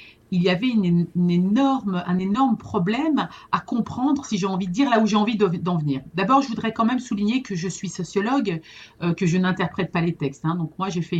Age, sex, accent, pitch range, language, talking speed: 40-59, female, French, 175-230 Hz, French, 235 wpm